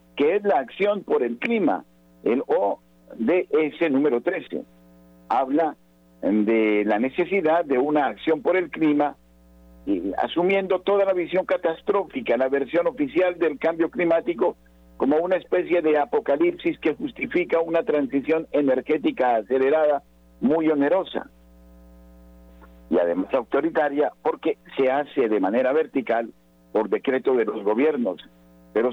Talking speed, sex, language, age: 125 wpm, male, Spanish, 50-69